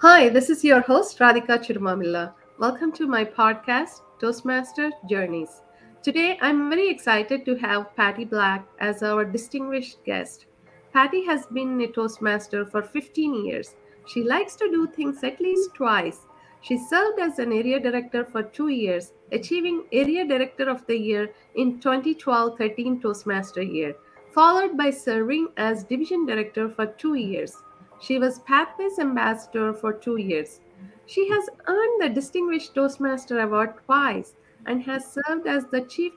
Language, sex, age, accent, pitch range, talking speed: English, female, 50-69, Indian, 215-295 Hz, 150 wpm